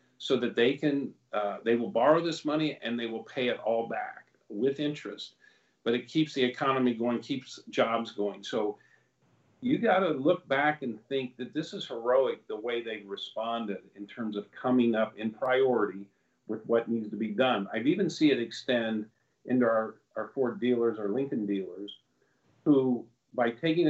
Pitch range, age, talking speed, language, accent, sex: 115-140 Hz, 50-69, 185 wpm, English, American, male